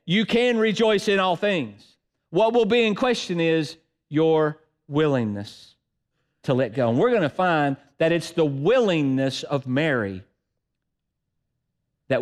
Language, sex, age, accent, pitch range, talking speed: English, male, 50-69, American, 115-180 Hz, 140 wpm